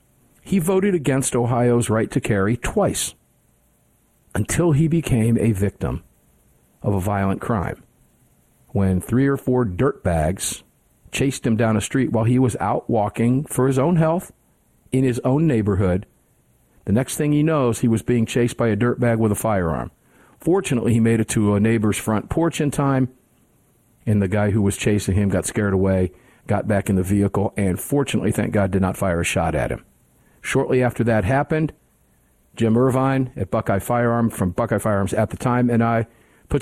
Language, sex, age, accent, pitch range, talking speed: English, male, 50-69, American, 100-125 Hz, 185 wpm